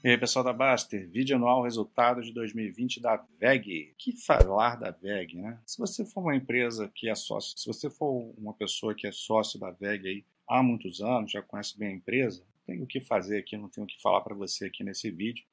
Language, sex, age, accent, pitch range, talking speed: Portuguese, male, 40-59, Brazilian, 105-125 Hz, 230 wpm